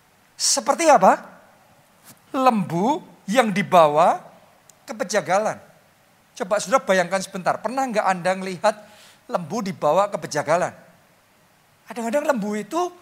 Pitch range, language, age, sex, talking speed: 195-275 Hz, Indonesian, 50-69, male, 100 wpm